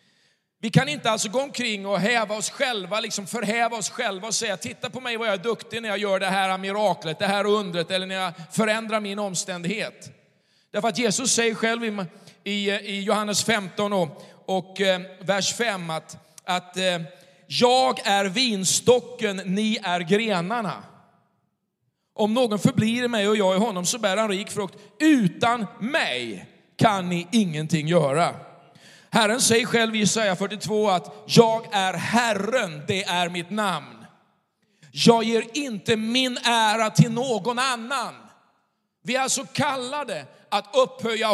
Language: Swedish